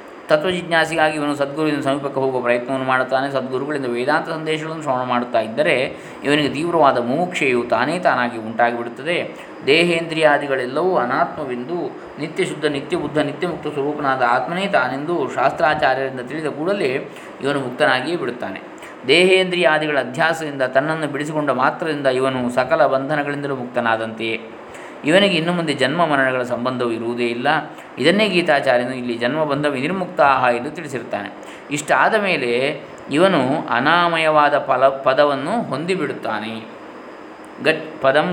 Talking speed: 105 wpm